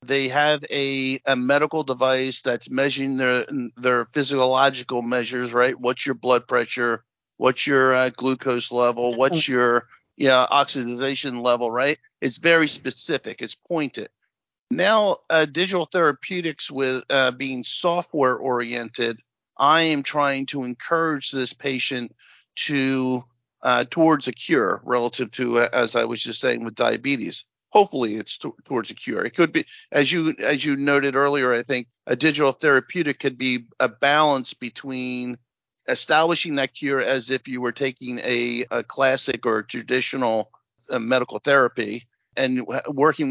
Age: 50-69